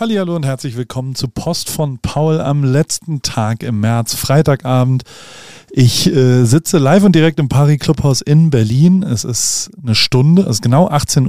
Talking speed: 175 wpm